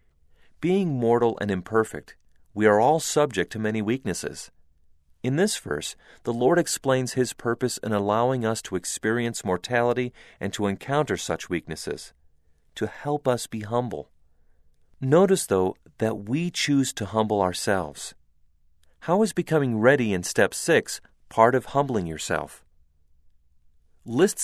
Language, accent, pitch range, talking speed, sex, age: English, American, 75-125 Hz, 135 wpm, male, 40-59